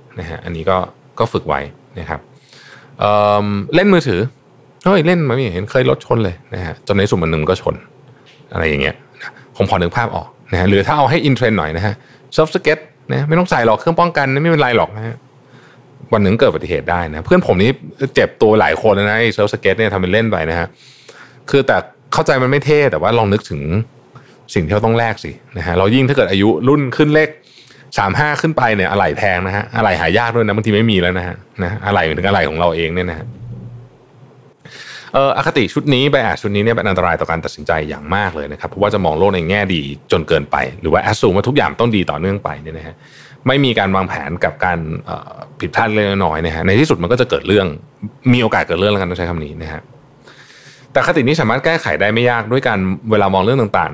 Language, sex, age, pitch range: Thai, male, 20-39, 90-135 Hz